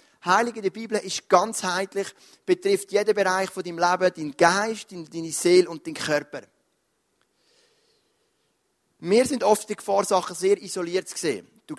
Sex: male